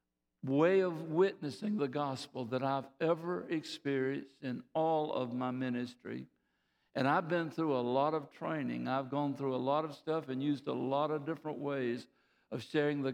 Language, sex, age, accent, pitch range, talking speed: English, male, 60-79, American, 135-185 Hz, 180 wpm